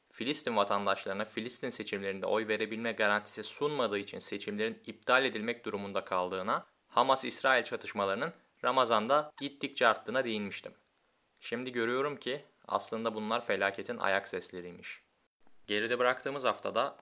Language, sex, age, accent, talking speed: Turkish, male, 20-39, native, 110 wpm